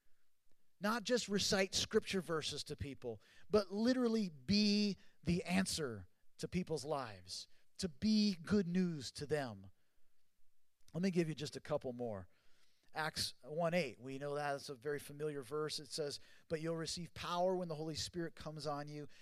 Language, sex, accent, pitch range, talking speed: English, male, American, 130-175 Hz, 160 wpm